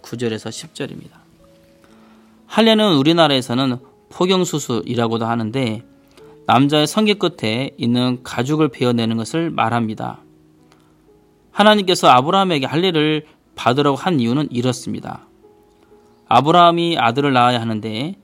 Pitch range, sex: 120-165 Hz, male